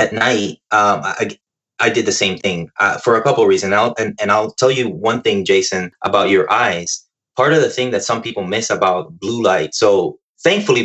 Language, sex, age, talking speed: English, male, 20-39, 215 wpm